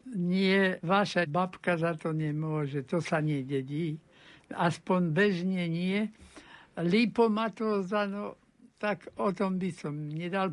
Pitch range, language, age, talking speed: 180-210 Hz, Slovak, 60-79, 110 wpm